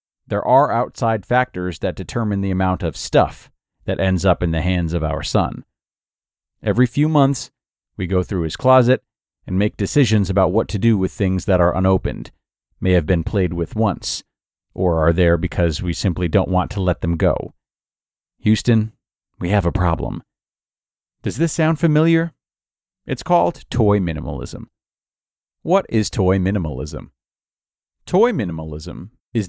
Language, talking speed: English, 155 wpm